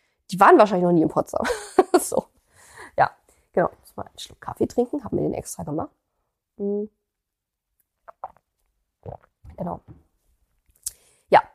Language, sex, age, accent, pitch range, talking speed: German, female, 20-39, German, 180-230 Hz, 125 wpm